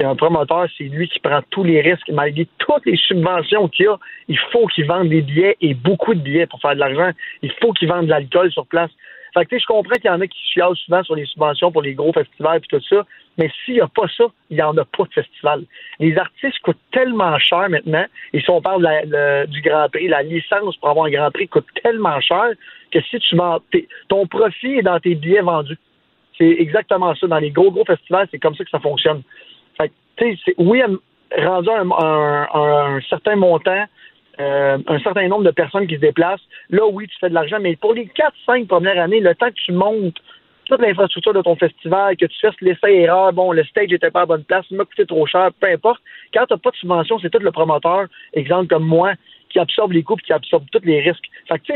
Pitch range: 160-215 Hz